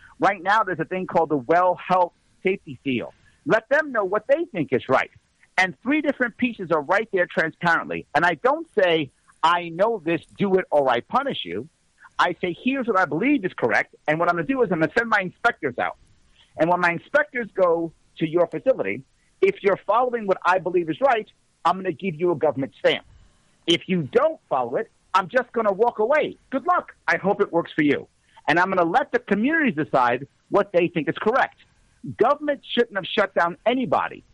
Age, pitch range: 50-69, 170-260 Hz